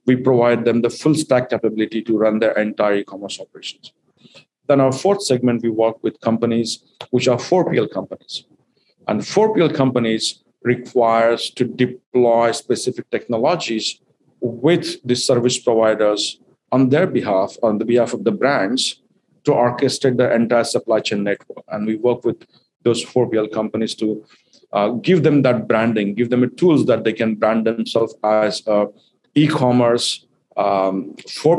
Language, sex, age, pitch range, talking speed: English, male, 50-69, 110-125 Hz, 150 wpm